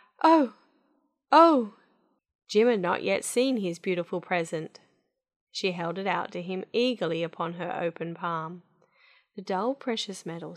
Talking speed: 140 wpm